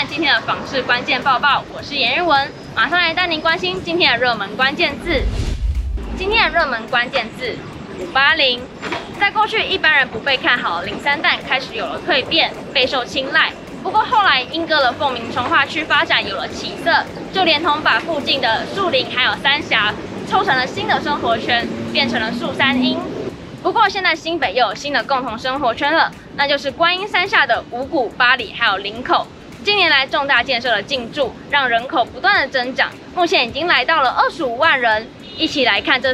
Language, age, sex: Chinese, 20-39, female